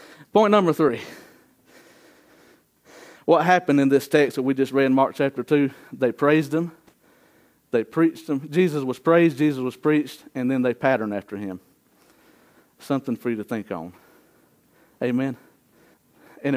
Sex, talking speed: male, 150 wpm